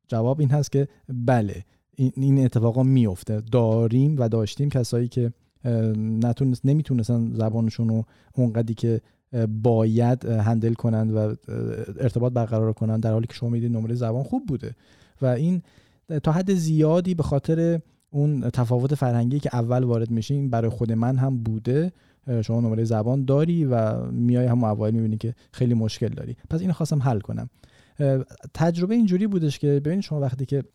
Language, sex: Persian, male